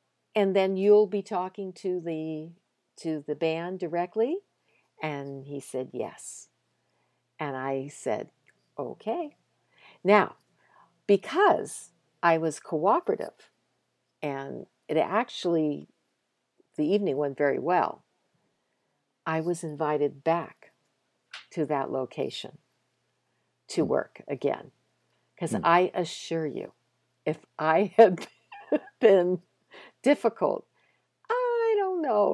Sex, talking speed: female, 100 wpm